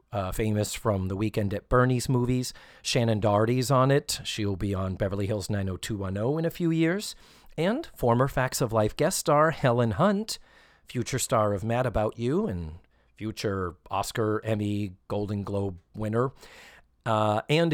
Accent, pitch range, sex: American, 110-150 Hz, male